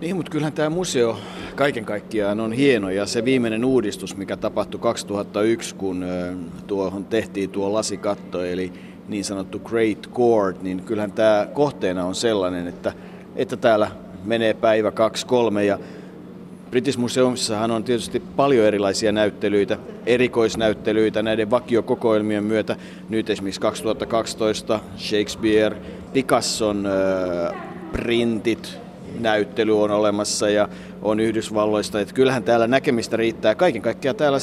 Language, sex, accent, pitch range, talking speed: Finnish, male, native, 100-115 Hz, 125 wpm